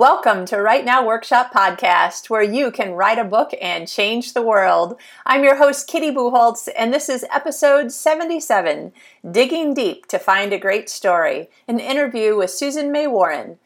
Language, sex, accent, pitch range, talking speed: English, female, American, 185-255 Hz, 170 wpm